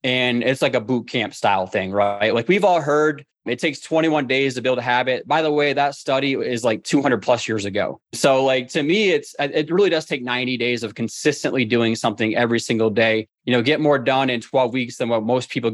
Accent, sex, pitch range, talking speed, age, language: American, male, 110-135 Hz, 235 wpm, 20-39, English